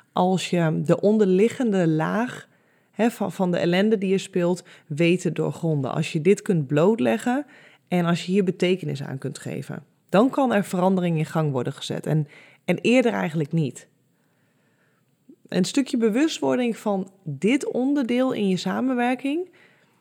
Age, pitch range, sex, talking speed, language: 20-39, 160-210 Hz, female, 145 wpm, Dutch